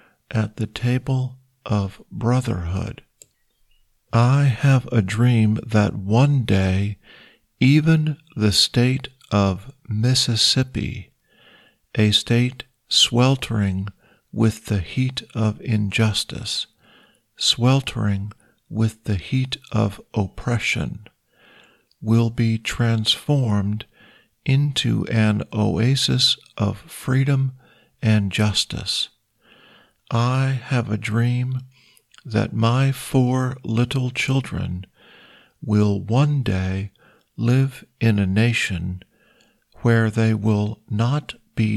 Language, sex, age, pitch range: Thai, male, 50-69, 105-130 Hz